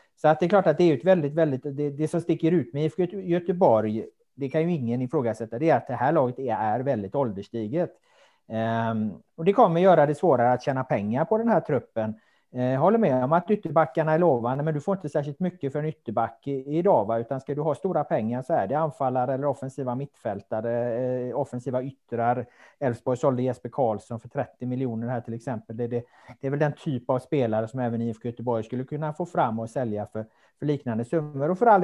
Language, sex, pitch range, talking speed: Swedish, male, 120-160 Hz, 220 wpm